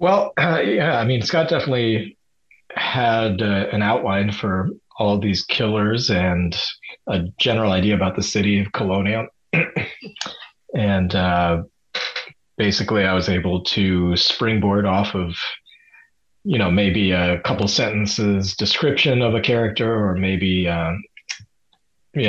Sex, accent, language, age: male, American, English, 30-49